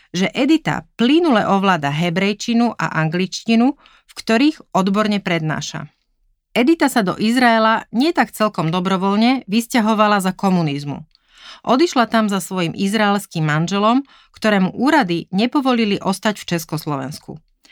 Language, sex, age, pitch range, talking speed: Slovak, female, 30-49, 175-240 Hz, 115 wpm